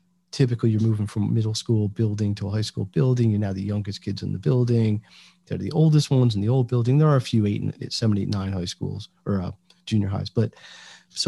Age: 40-59